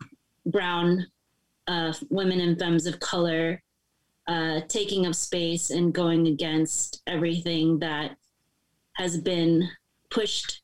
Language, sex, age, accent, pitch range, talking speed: English, female, 30-49, American, 160-190 Hz, 105 wpm